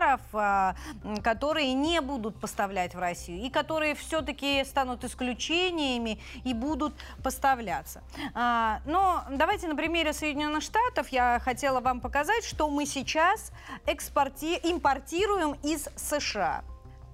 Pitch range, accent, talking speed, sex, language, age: 230-290 Hz, native, 105 wpm, female, Russian, 30-49